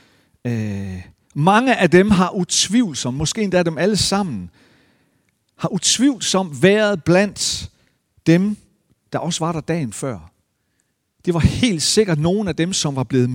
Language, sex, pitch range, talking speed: Danish, male, 110-165 Hz, 145 wpm